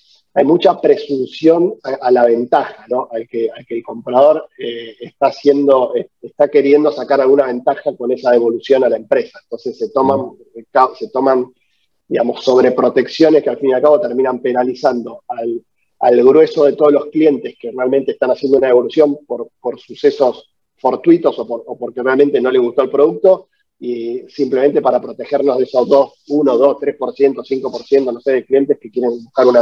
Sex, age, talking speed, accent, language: male, 30-49, 180 wpm, Argentinian, Spanish